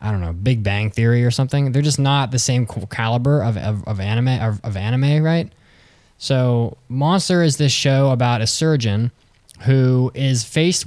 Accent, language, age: American, English, 10-29